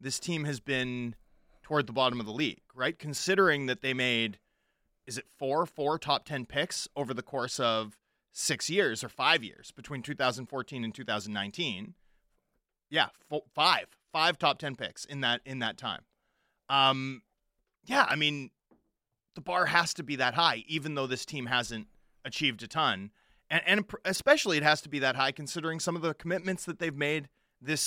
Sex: male